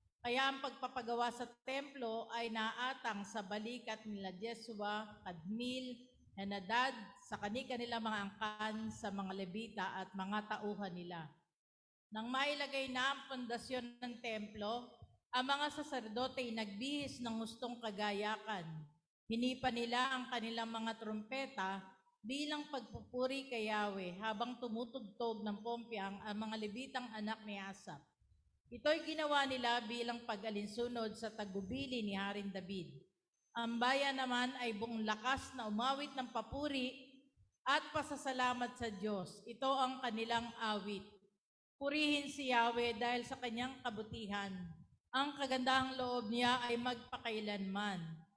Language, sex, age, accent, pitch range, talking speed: Filipino, female, 50-69, native, 210-255 Hz, 125 wpm